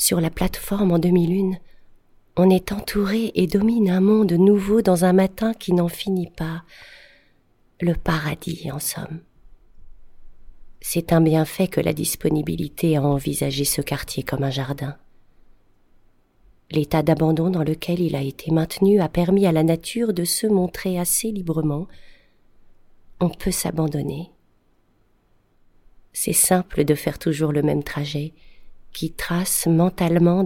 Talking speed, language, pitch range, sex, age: 135 wpm, French, 150-185 Hz, female, 40-59